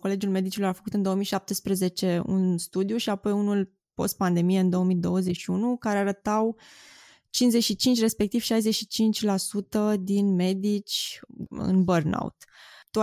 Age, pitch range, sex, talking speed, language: 20-39, 190-225 Hz, female, 110 wpm, Romanian